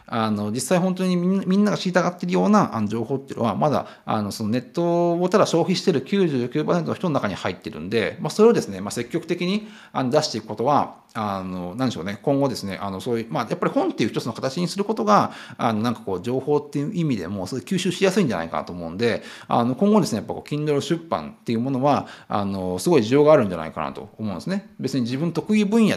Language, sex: Japanese, male